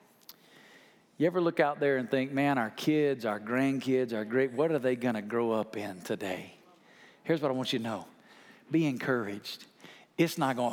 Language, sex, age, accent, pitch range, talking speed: English, male, 50-69, American, 125-170 Hz, 195 wpm